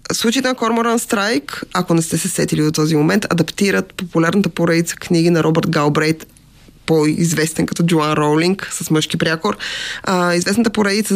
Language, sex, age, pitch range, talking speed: Bulgarian, female, 20-39, 165-205 Hz, 150 wpm